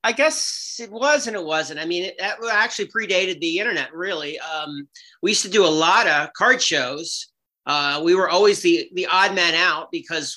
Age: 40-59